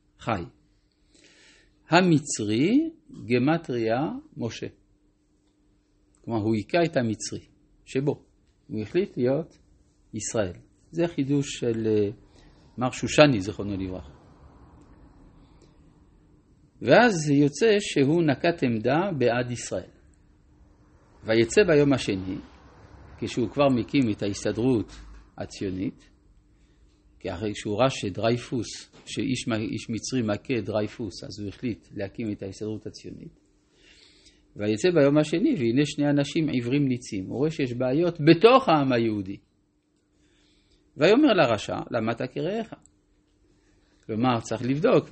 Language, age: Hebrew, 50-69